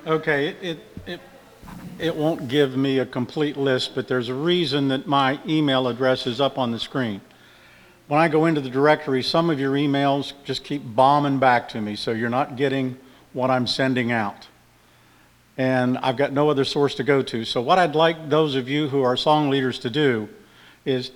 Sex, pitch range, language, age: male, 130-165 Hz, English, 50-69